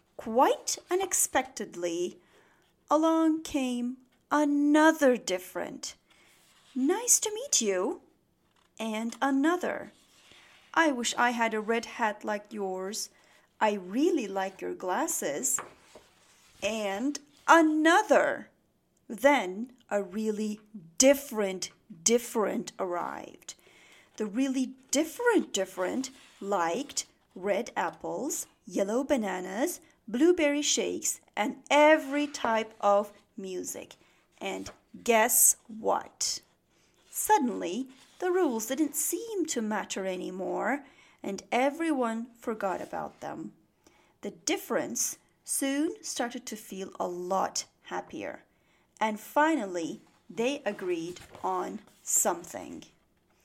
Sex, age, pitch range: female, 40-59, 200-285 Hz